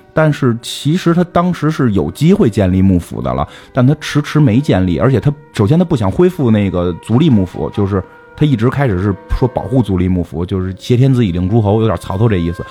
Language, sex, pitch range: Chinese, male, 95-135 Hz